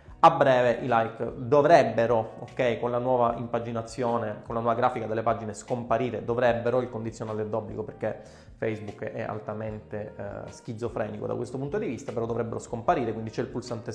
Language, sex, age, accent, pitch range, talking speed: Italian, male, 20-39, native, 120-150 Hz, 170 wpm